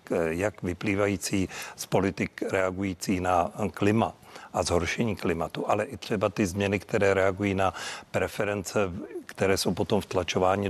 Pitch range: 90-105 Hz